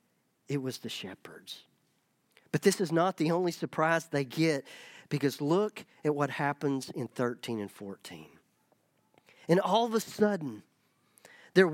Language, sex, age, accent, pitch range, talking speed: English, male, 40-59, American, 145-195 Hz, 145 wpm